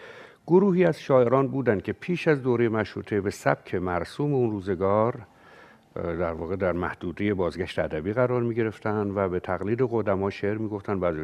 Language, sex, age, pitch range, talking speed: Persian, male, 60-79, 100-135 Hz, 145 wpm